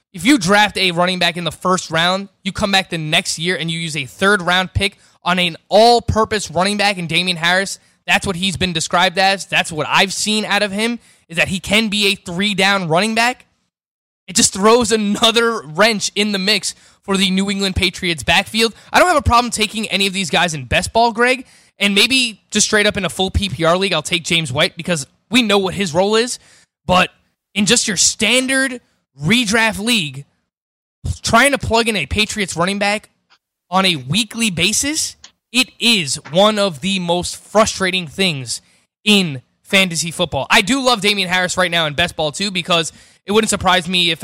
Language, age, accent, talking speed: English, 20-39, American, 200 wpm